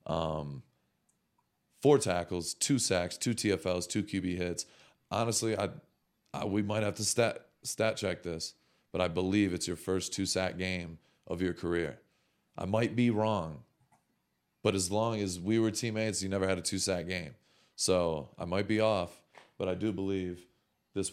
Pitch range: 85-100 Hz